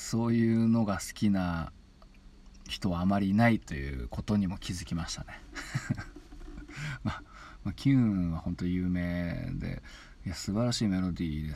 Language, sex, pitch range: Japanese, male, 85-110 Hz